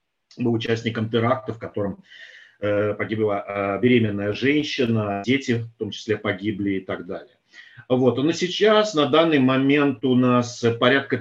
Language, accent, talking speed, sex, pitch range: Russian, native, 150 wpm, male, 110-135 Hz